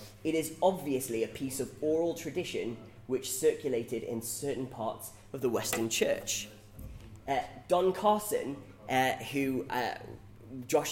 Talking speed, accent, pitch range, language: 130 wpm, British, 110-160 Hz, English